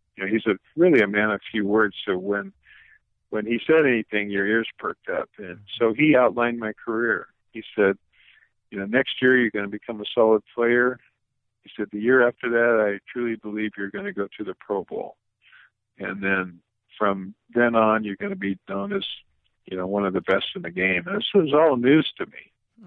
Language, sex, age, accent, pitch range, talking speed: English, male, 50-69, American, 100-120 Hz, 220 wpm